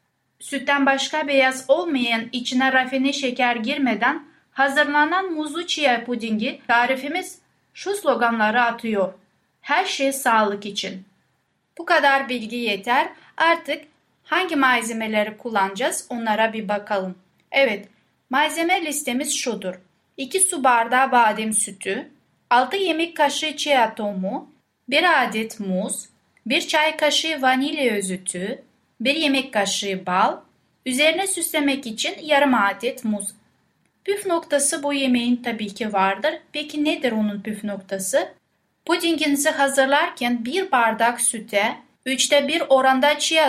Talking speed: 115 wpm